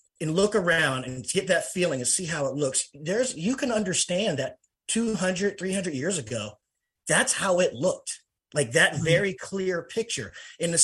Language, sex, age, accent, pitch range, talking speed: English, male, 30-49, American, 140-190 Hz, 175 wpm